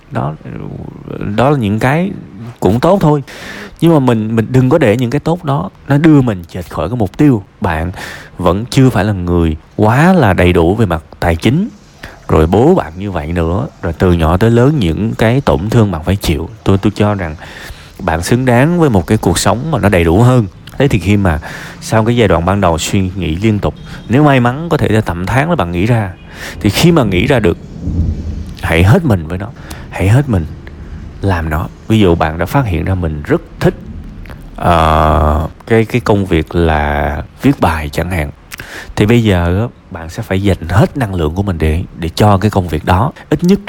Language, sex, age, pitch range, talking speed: Vietnamese, male, 20-39, 85-120 Hz, 215 wpm